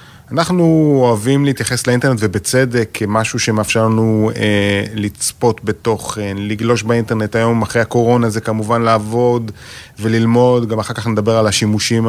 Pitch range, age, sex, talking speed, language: 110-135 Hz, 30-49, male, 135 wpm, Hebrew